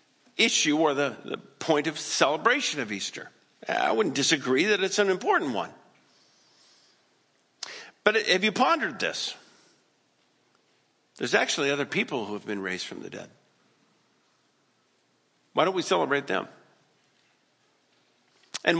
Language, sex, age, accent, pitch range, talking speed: English, male, 50-69, American, 140-215 Hz, 125 wpm